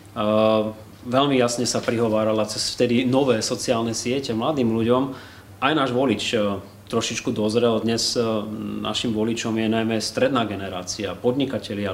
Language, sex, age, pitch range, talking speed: Slovak, male, 30-49, 105-120 Hz, 135 wpm